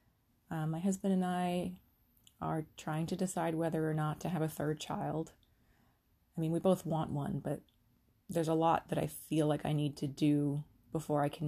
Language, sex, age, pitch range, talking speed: English, female, 30-49, 145-175 Hz, 200 wpm